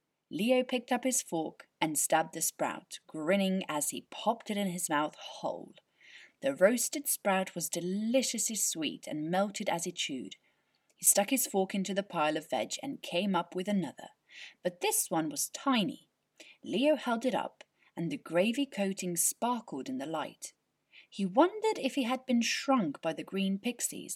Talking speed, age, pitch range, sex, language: 175 wpm, 30-49, 185-275 Hz, female, English